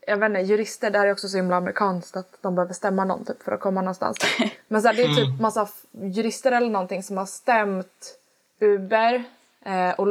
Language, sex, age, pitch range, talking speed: Swedish, female, 20-39, 190-235 Hz, 215 wpm